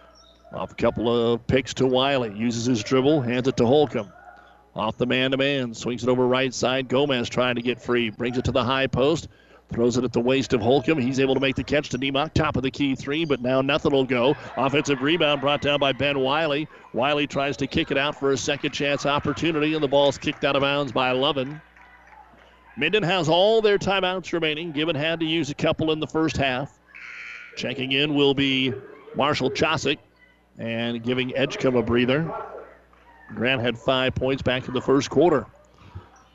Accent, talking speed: American, 200 wpm